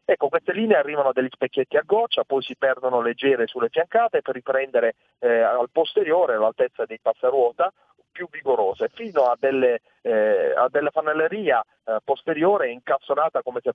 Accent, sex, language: native, male, Italian